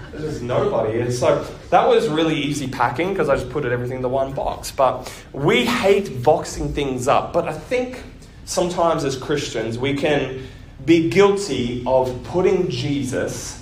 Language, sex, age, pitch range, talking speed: English, male, 20-39, 120-155 Hz, 165 wpm